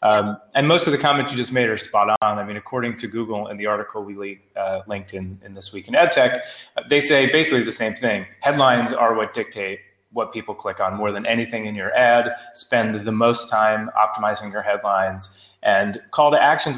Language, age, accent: English, 30-49, American